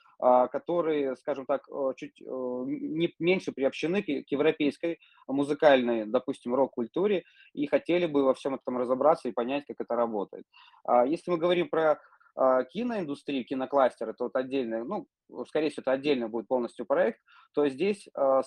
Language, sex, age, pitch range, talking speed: Russian, male, 20-39, 125-160 Hz, 135 wpm